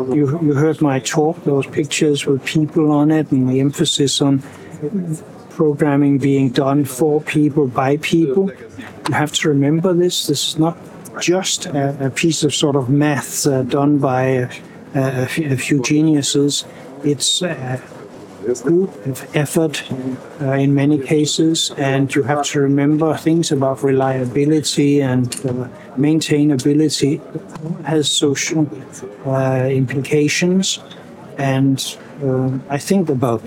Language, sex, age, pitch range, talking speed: Polish, male, 60-79, 135-155 Hz, 135 wpm